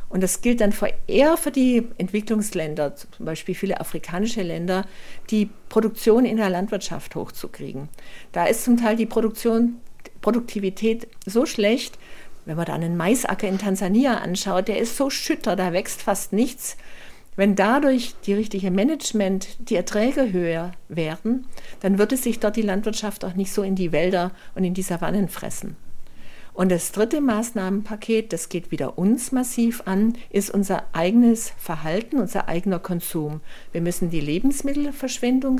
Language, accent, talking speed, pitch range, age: German, German, 155 wpm, 180-230 Hz, 50-69